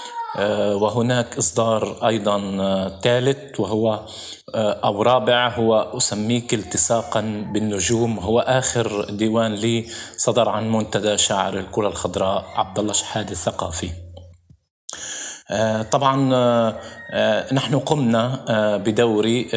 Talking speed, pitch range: 85 wpm, 105-125 Hz